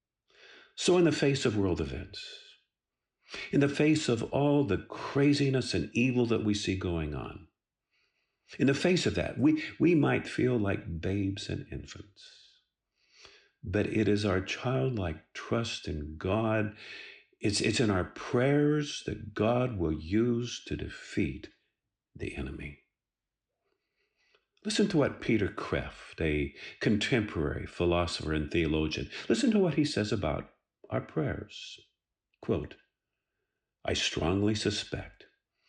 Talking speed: 130 wpm